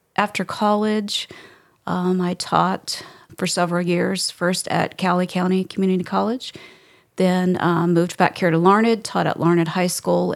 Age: 40-59